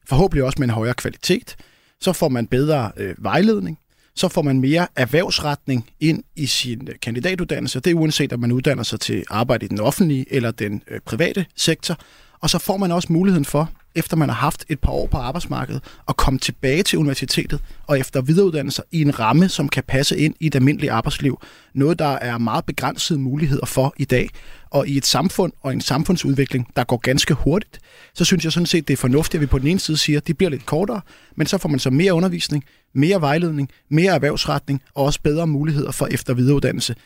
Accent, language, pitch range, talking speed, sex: native, Danish, 135-165 Hz, 205 wpm, male